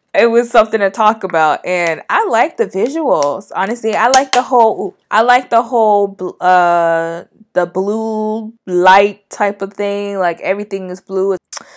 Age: 20-39